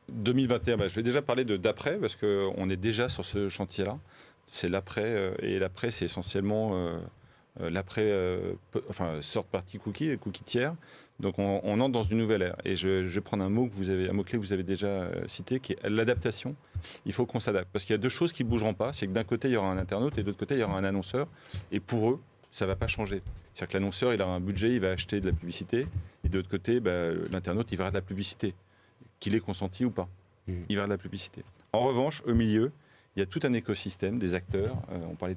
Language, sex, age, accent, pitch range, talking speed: French, male, 40-59, French, 95-115 Hz, 250 wpm